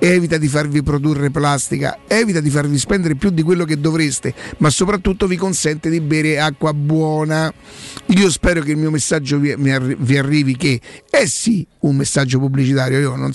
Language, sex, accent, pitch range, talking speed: Italian, male, native, 140-165 Hz, 175 wpm